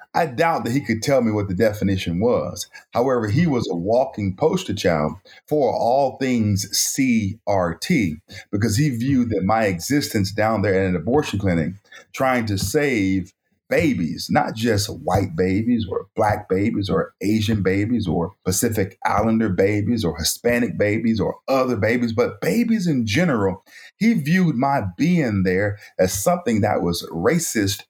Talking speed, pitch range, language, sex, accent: 155 wpm, 95-130 Hz, English, male, American